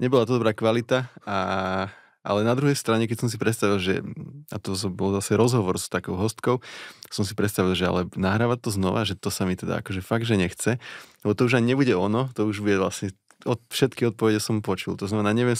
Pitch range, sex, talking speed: 100-115 Hz, male, 220 wpm